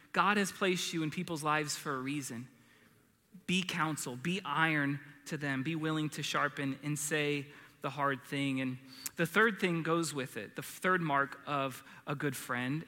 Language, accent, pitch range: English, American, 145-190 Hz